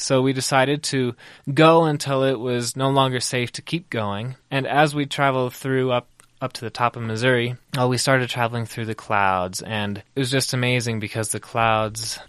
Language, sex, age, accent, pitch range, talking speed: English, male, 20-39, American, 105-125 Hz, 200 wpm